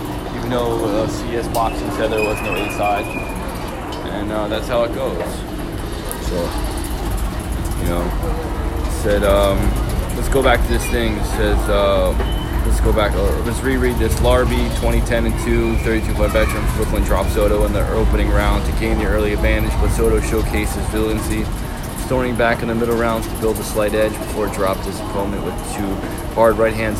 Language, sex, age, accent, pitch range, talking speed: English, male, 20-39, American, 100-110 Hz, 170 wpm